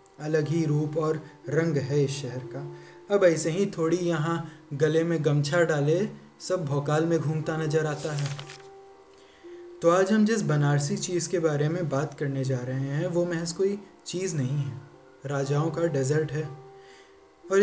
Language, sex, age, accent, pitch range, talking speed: Hindi, male, 20-39, native, 145-175 Hz, 170 wpm